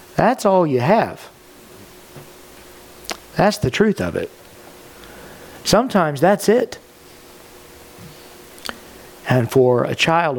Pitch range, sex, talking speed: 140-180 Hz, male, 90 wpm